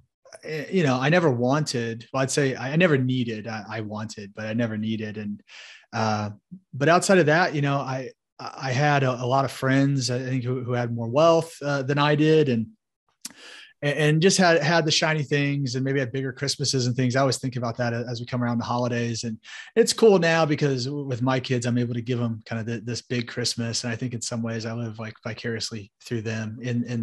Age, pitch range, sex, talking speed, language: 30-49, 115-150 Hz, male, 230 wpm, English